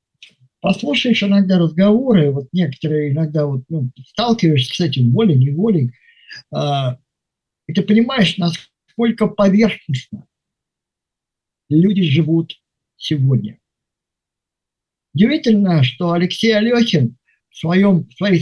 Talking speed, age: 85 wpm, 50-69